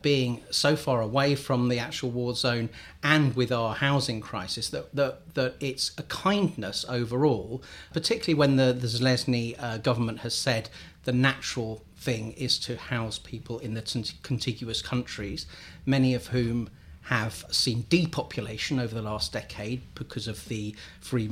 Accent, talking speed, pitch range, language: British, 155 wpm, 110-135 Hz, English